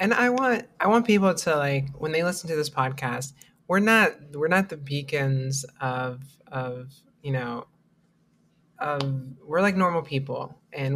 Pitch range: 130-150 Hz